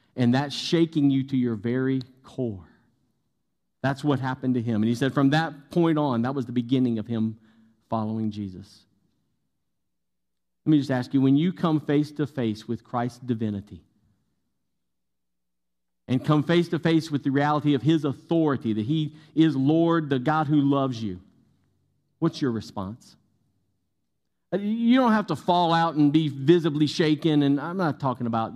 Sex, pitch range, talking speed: male, 110-155 Hz, 170 wpm